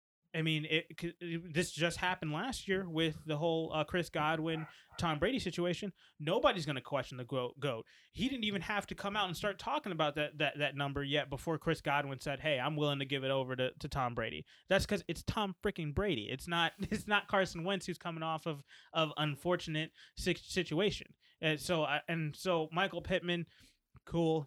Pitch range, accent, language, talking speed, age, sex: 145-175 Hz, American, English, 195 wpm, 20-39, male